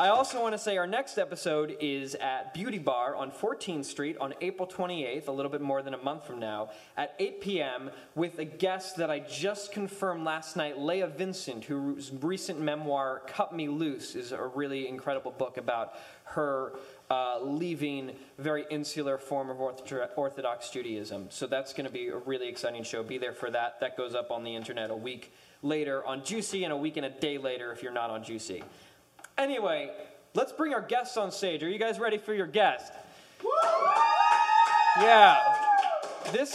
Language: English